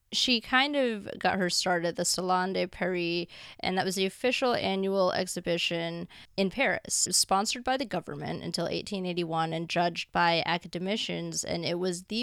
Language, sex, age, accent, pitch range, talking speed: English, female, 20-39, American, 170-205 Hz, 175 wpm